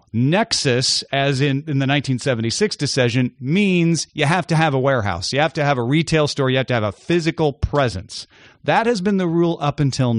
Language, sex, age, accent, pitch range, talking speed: English, male, 40-59, American, 130-205 Hz, 205 wpm